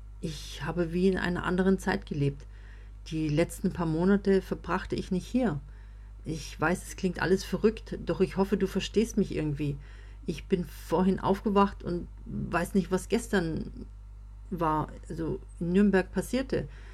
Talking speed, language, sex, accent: 150 wpm, German, female, German